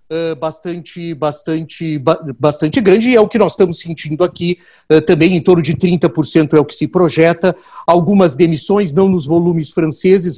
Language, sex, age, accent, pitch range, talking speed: Portuguese, male, 50-69, Brazilian, 155-185 Hz, 180 wpm